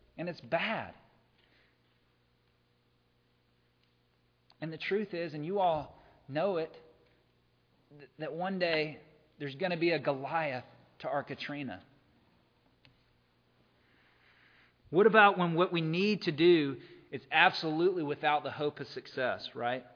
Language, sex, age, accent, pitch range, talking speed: English, male, 40-59, American, 105-160 Hz, 120 wpm